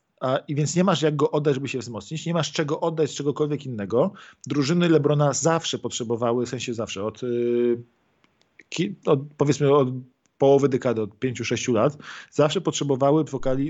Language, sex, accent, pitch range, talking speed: Polish, male, native, 120-140 Hz, 180 wpm